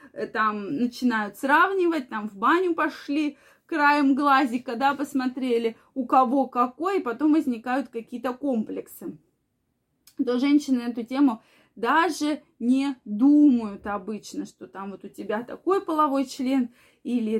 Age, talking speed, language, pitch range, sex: 20-39, 125 wpm, Russian, 230-290 Hz, female